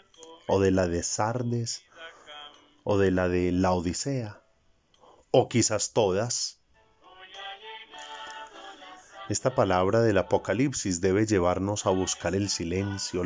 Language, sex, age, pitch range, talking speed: Spanish, male, 30-49, 95-130 Hz, 110 wpm